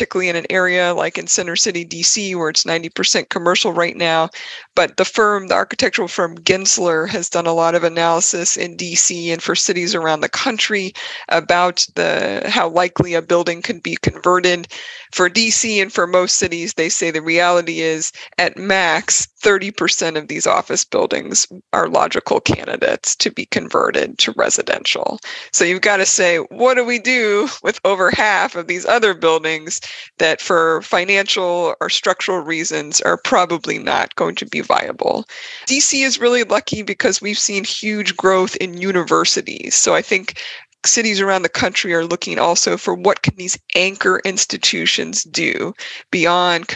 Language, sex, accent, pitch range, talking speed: English, female, American, 170-205 Hz, 165 wpm